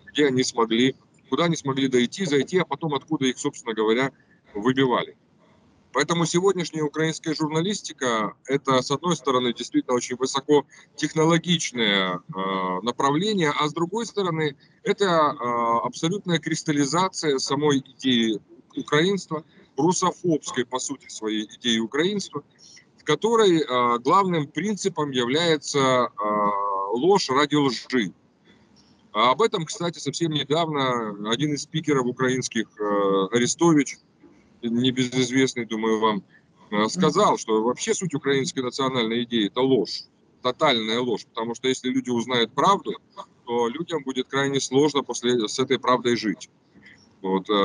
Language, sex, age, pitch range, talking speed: Russian, male, 30-49, 120-155 Hz, 125 wpm